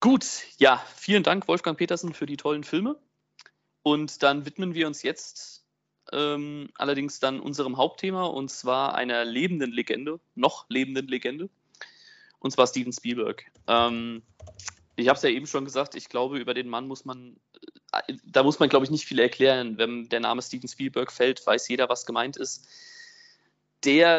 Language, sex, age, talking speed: German, male, 20-39, 170 wpm